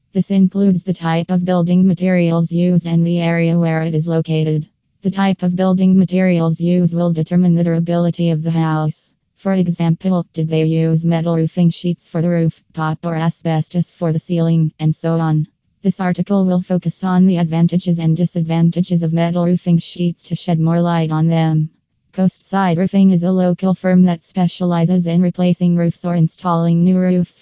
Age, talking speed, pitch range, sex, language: 20-39, 180 wpm, 165-180 Hz, female, English